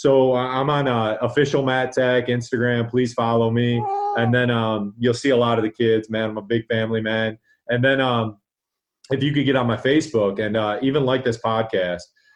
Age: 30-49